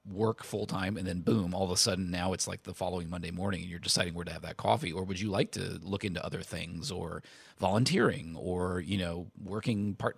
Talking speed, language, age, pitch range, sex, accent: 240 wpm, English, 30-49, 85-105 Hz, male, American